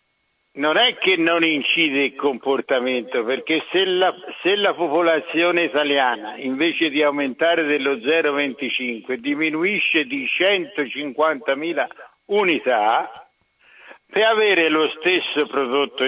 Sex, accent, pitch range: male, native, 145-215 Hz